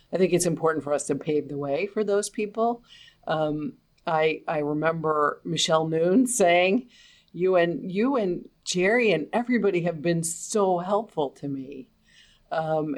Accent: American